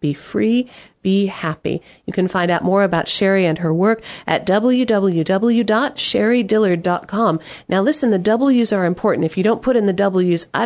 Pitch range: 160-205 Hz